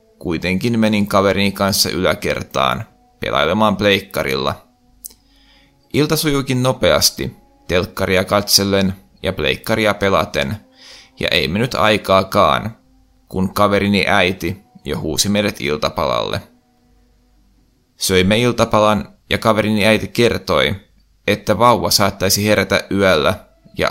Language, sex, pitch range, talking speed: Finnish, male, 95-110 Hz, 95 wpm